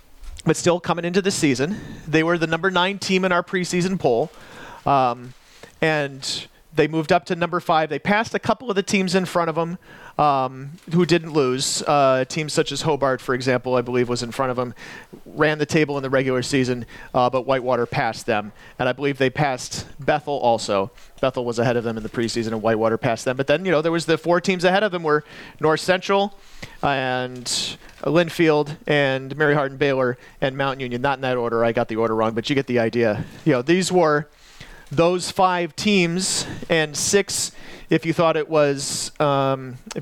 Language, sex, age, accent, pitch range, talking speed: English, male, 40-59, American, 130-165 Hz, 205 wpm